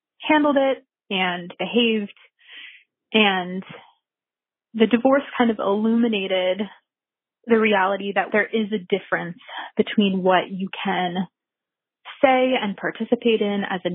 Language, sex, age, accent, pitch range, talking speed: English, female, 20-39, American, 190-235 Hz, 115 wpm